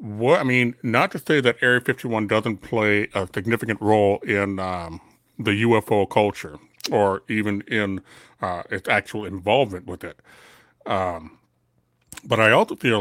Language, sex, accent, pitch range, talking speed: English, male, American, 100-115 Hz, 150 wpm